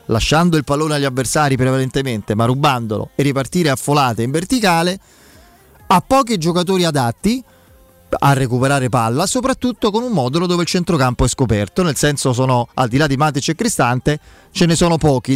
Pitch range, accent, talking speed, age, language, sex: 130-170 Hz, native, 170 wpm, 30-49, Italian, male